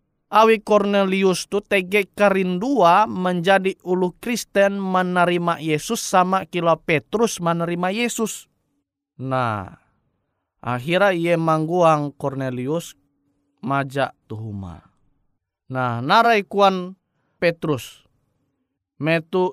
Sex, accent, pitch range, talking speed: male, native, 135-185 Hz, 85 wpm